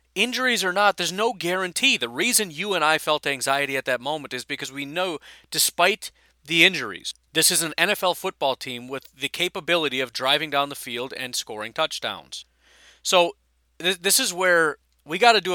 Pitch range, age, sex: 135-185 Hz, 40-59, male